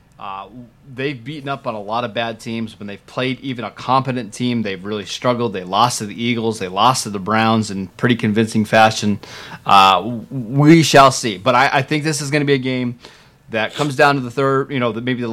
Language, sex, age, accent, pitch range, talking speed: English, male, 20-39, American, 110-135 Hz, 235 wpm